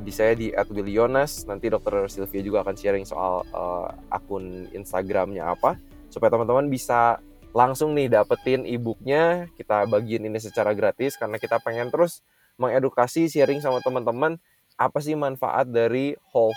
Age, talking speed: 20-39, 145 wpm